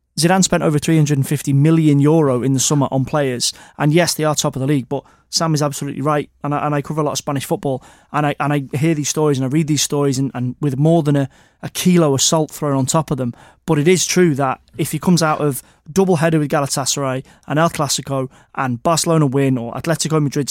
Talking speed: 245 wpm